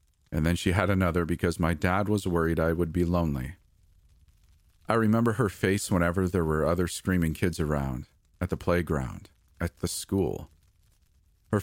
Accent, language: American, English